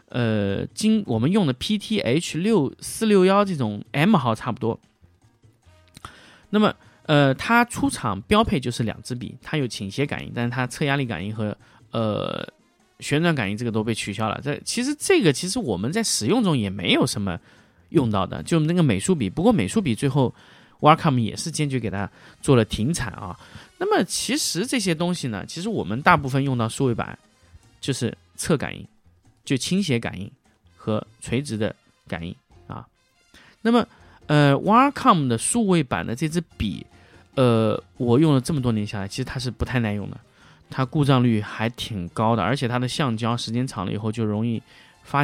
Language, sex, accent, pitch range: Chinese, male, native, 110-160 Hz